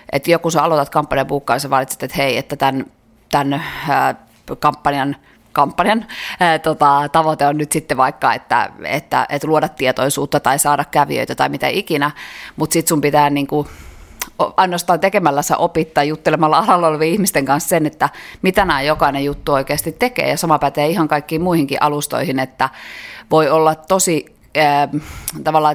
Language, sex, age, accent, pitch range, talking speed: Finnish, female, 30-49, native, 140-165 Hz, 150 wpm